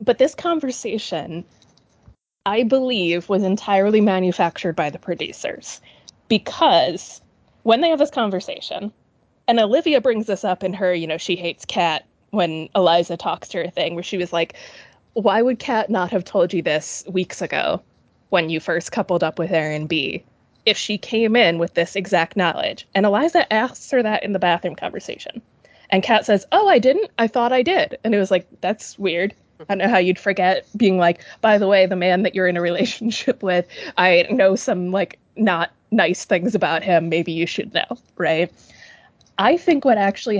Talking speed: 190 wpm